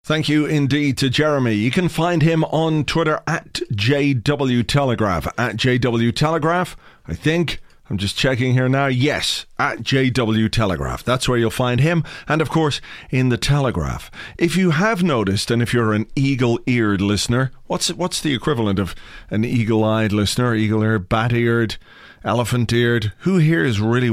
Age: 40-59